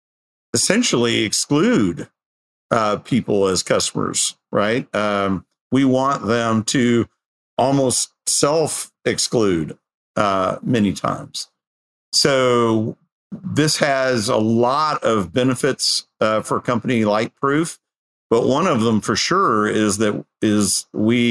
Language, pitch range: English, 100-125 Hz